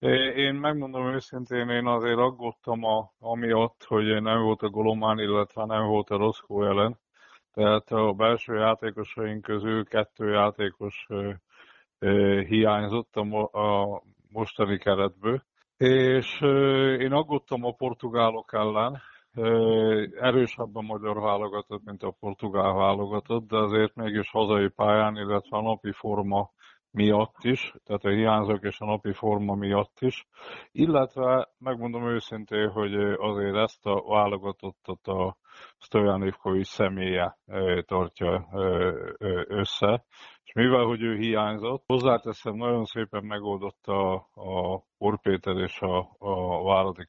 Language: Hungarian